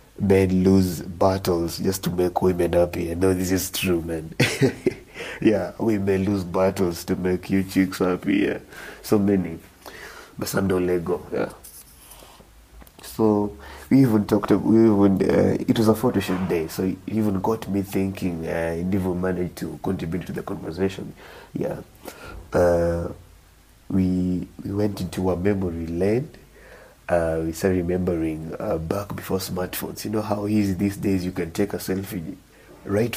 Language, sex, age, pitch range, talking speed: English, male, 30-49, 85-100 Hz, 155 wpm